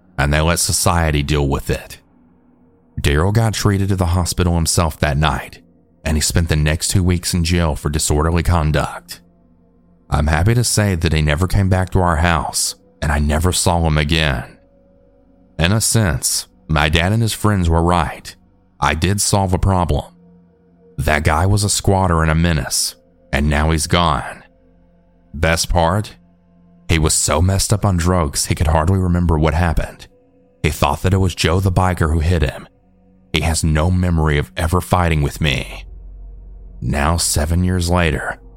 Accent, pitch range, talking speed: American, 80-90 Hz, 175 wpm